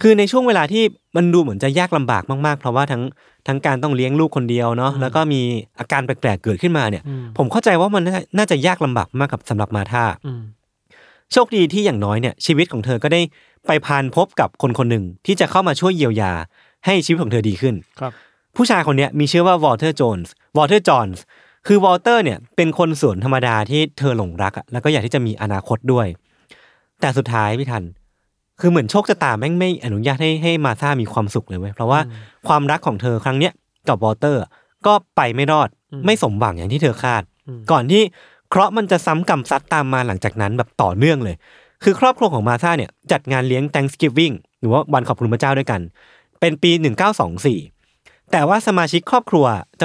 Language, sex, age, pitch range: Thai, male, 20-39, 120-170 Hz